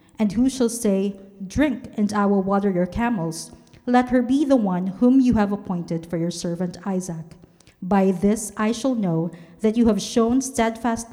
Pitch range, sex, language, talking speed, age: 175-230 Hz, female, English, 185 wpm, 50-69